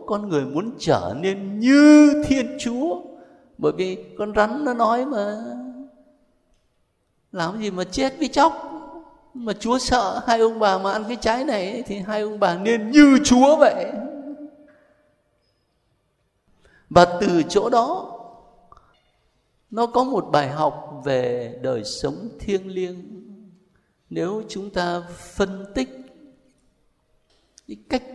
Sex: male